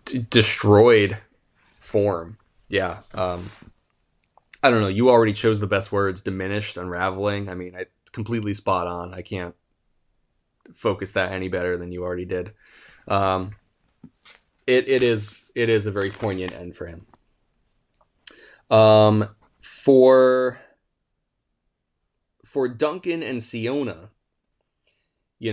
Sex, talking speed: male, 120 wpm